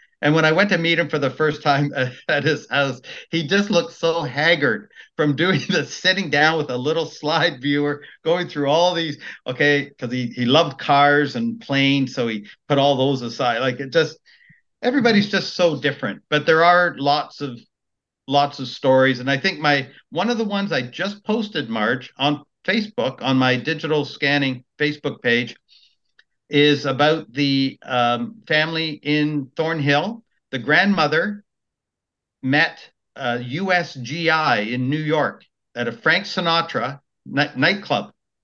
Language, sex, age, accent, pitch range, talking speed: English, male, 50-69, American, 135-175 Hz, 160 wpm